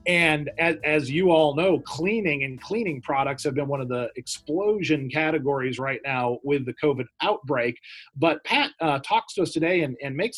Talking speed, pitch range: 185 wpm, 140-175 Hz